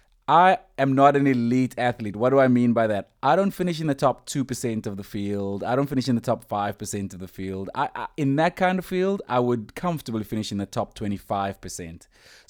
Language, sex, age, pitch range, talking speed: English, male, 20-39, 105-130 Hz, 225 wpm